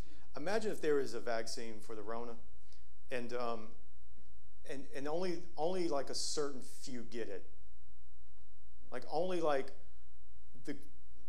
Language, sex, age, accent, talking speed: English, male, 40-59, American, 135 wpm